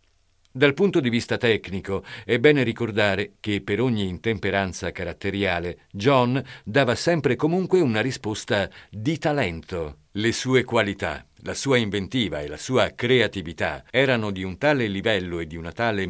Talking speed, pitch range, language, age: 150 wpm, 95-130 Hz, Italian, 50-69